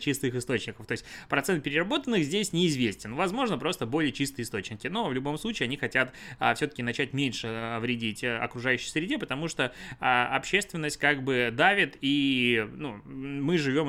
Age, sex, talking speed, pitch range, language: 20-39, male, 160 wpm, 120-140 Hz, Russian